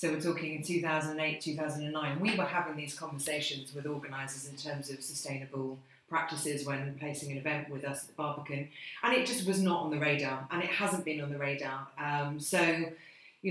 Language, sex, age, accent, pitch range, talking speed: English, female, 30-49, British, 150-175 Hz, 200 wpm